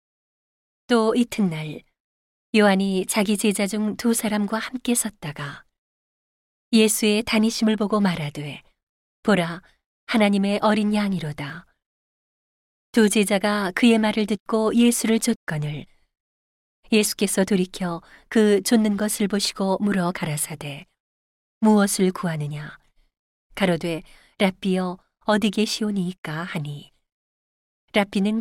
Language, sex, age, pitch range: Korean, female, 40-59, 170-220 Hz